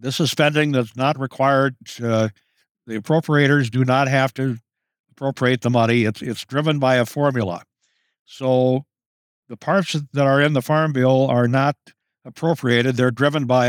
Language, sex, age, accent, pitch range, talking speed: English, male, 60-79, American, 120-140 Hz, 165 wpm